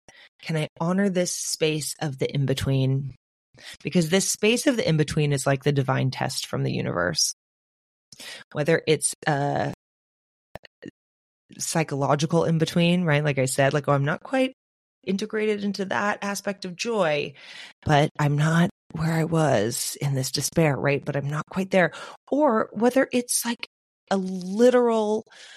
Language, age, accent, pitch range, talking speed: English, 30-49, American, 145-200 Hz, 150 wpm